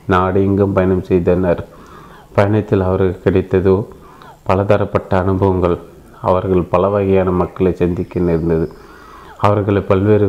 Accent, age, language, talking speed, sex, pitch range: native, 30-49, Tamil, 95 wpm, male, 90-100 Hz